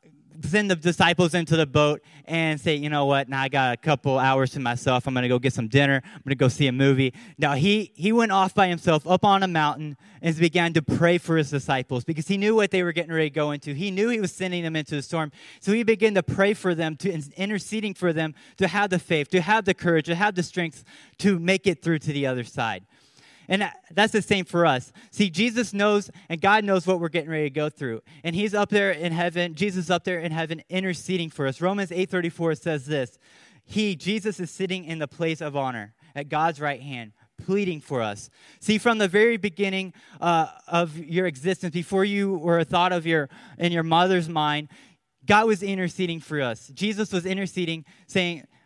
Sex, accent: male, American